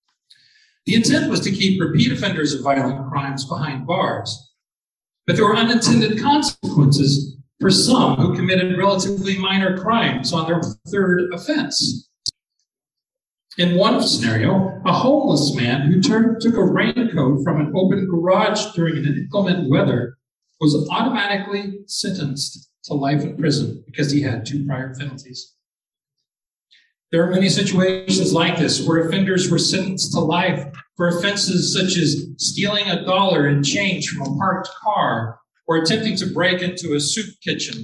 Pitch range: 145-210 Hz